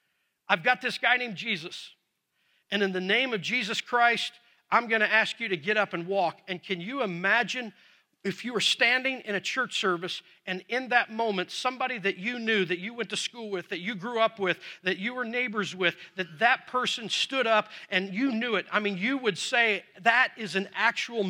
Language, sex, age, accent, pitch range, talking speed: English, male, 50-69, American, 195-245 Hz, 215 wpm